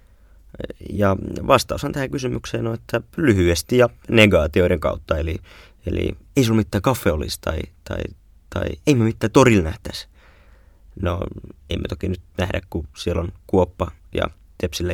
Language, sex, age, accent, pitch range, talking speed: Finnish, male, 20-39, native, 80-105 Hz, 155 wpm